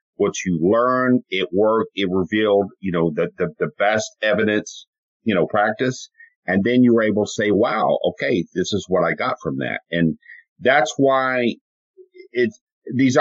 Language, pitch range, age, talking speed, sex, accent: English, 105-150 Hz, 50-69, 175 wpm, male, American